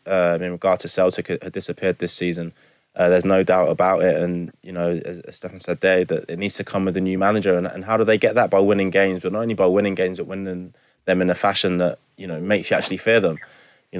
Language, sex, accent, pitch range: English, male, British, 90-100 Hz